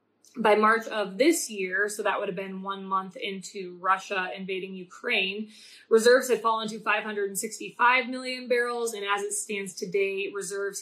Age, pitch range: 20-39, 200-250 Hz